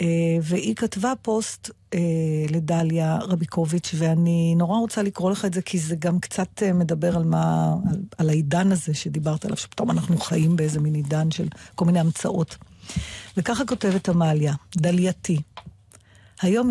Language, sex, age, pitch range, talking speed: Hebrew, female, 50-69, 160-210 Hz, 150 wpm